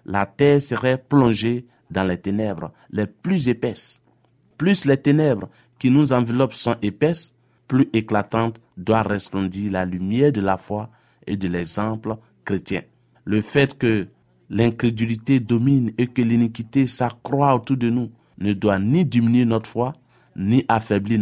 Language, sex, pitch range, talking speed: French, male, 105-135 Hz, 145 wpm